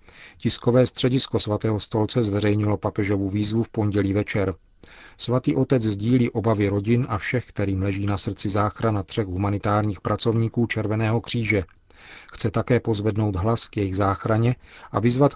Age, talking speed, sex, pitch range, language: 40-59, 140 wpm, male, 105-120 Hz, Czech